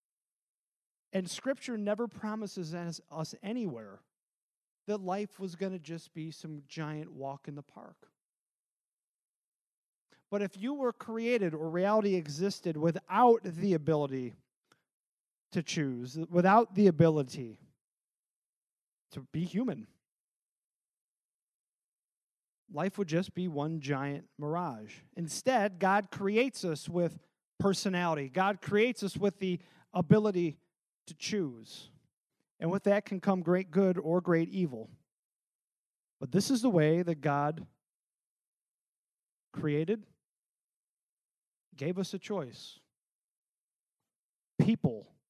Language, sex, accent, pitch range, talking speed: English, male, American, 155-200 Hz, 110 wpm